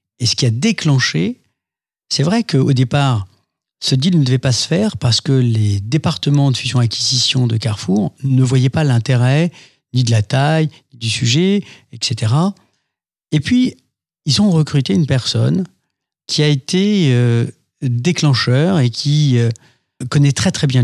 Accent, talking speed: French, 160 wpm